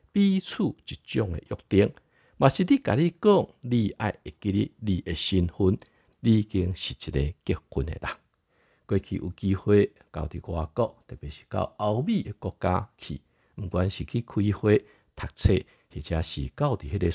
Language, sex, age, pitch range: Chinese, male, 60-79, 85-135 Hz